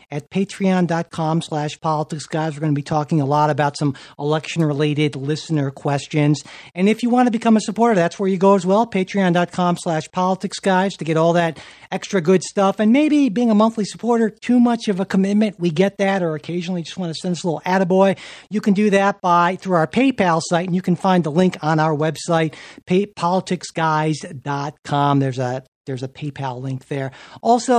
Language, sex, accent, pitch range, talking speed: English, male, American, 145-190 Hz, 195 wpm